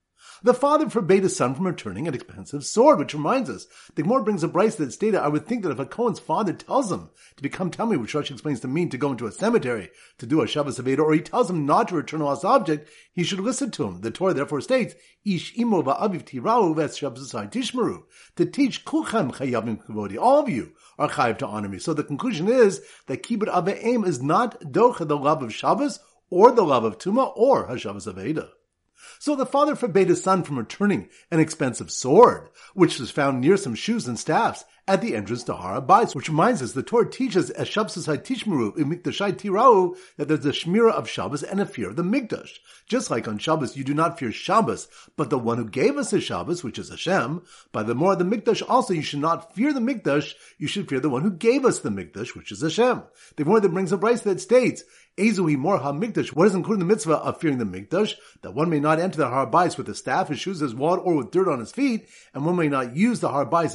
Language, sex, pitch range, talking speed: English, male, 145-220 Hz, 230 wpm